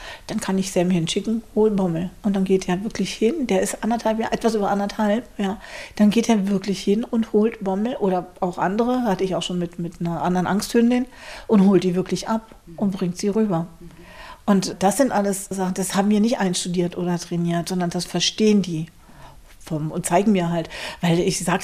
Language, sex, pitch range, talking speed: German, female, 175-225 Hz, 205 wpm